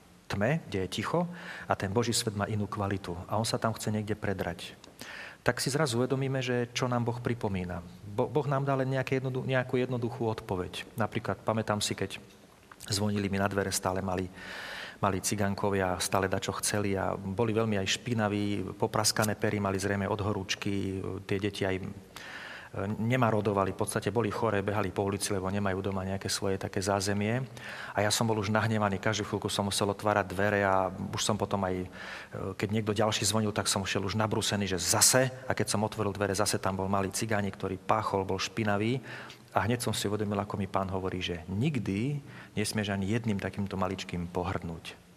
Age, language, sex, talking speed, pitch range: 40-59, Slovak, male, 180 wpm, 95-110 Hz